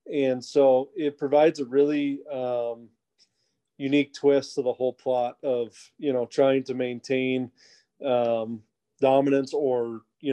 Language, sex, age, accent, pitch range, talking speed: English, male, 30-49, American, 125-140 Hz, 135 wpm